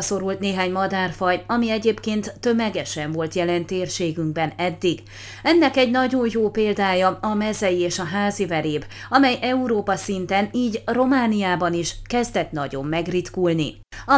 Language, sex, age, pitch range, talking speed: Hungarian, female, 30-49, 175-225 Hz, 125 wpm